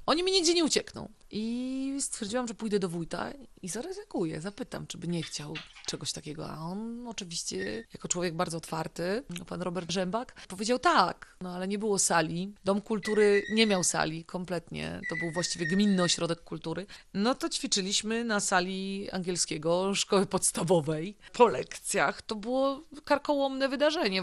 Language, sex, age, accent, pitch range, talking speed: Polish, female, 30-49, native, 175-230 Hz, 155 wpm